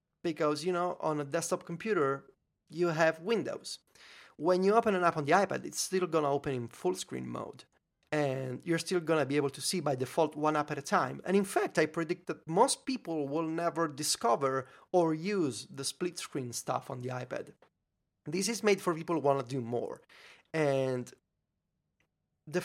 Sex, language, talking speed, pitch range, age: male, English, 200 wpm, 135-185 Hz, 30-49